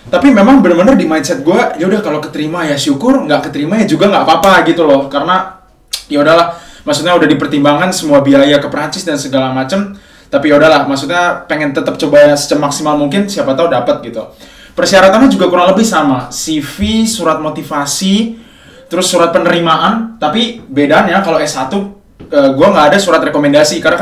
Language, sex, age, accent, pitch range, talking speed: Indonesian, male, 20-39, native, 150-210 Hz, 170 wpm